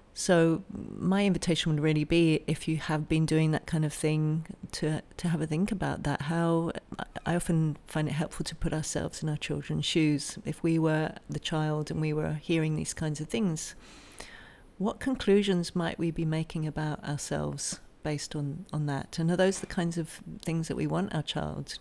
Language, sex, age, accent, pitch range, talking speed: English, female, 40-59, British, 150-170 Hz, 200 wpm